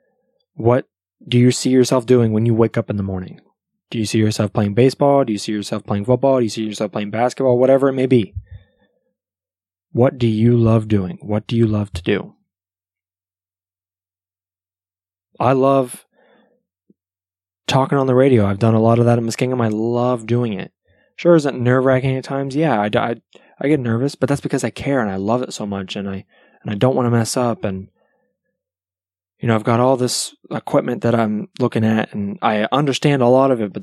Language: English